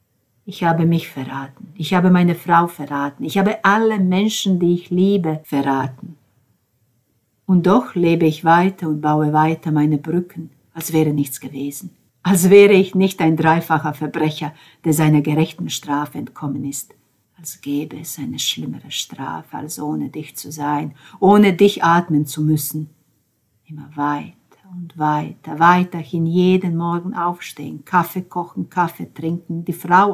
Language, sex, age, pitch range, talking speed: German, female, 50-69, 150-180 Hz, 145 wpm